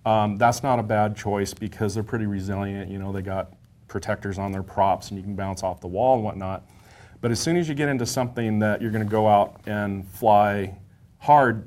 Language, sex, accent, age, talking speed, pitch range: English, male, American, 30-49, 225 wpm, 100-115 Hz